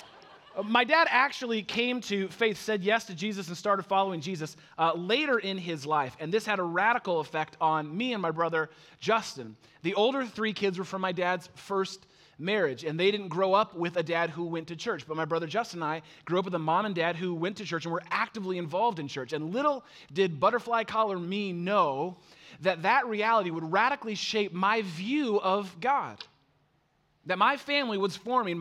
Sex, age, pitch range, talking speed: male, 30-49, 165-225 Hz, 205 wpm